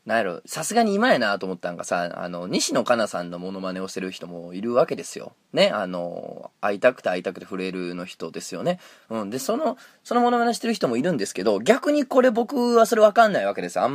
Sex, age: male, 20-39